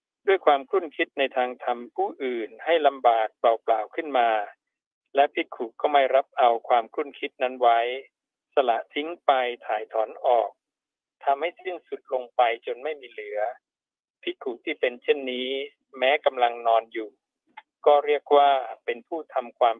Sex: male